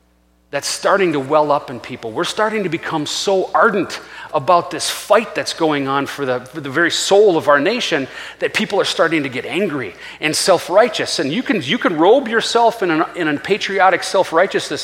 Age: 40-59